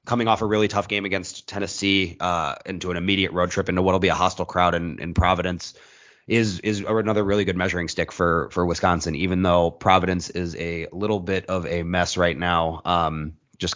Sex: male